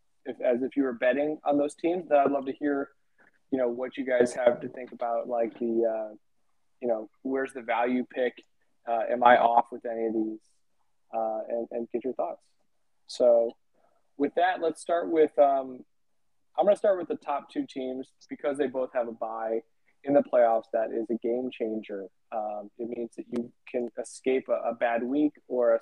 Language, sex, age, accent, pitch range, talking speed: English, male, 20-39, American, 115-135 Hz, 205 wpm